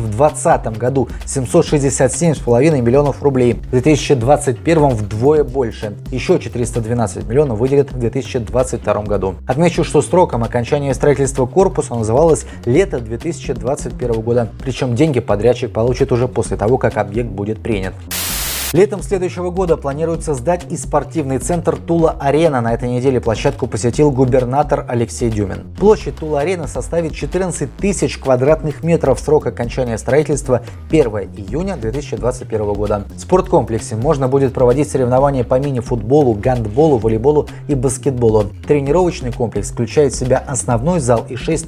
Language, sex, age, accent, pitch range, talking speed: Russian, male, 20-39, native, 115-150 Hz, 130 wpm